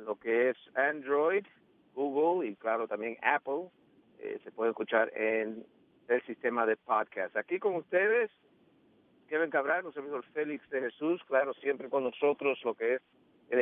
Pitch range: 120-145 Hz